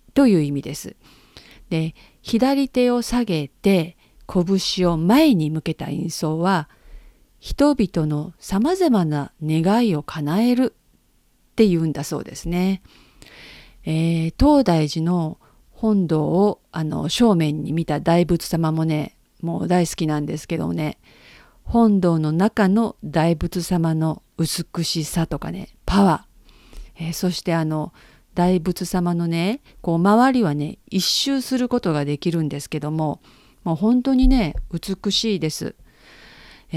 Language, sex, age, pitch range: Japanese, female, 50-69, 160-205 Hz